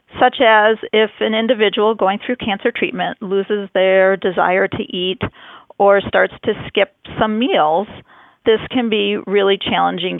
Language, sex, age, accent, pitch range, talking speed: English, female, 40-59, American, 195-225 Hz, 145 wpm